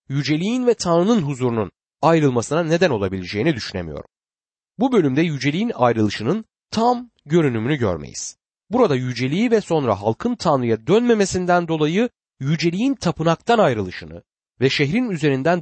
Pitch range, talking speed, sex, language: 115-185 Hz, 110 wpm, male, Turkish